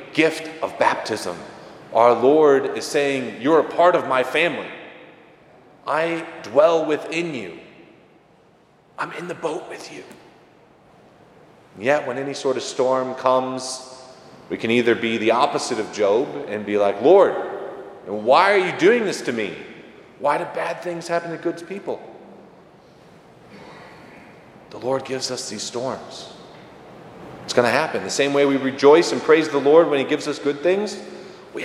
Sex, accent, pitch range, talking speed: male, American, 130-170 Hz, 155 wpm